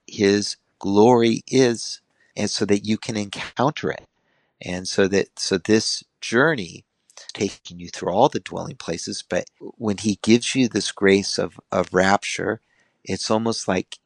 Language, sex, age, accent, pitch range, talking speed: English, male, 50-69, American, 95-120 Hz, 155 wpm